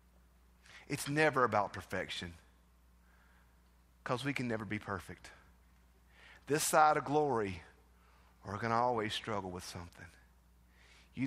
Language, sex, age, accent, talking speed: English, male, 40-59, American, 115 wpm